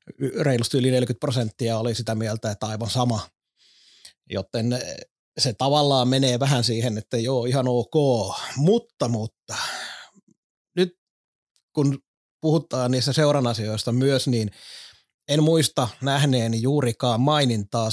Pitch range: 120-135 Hz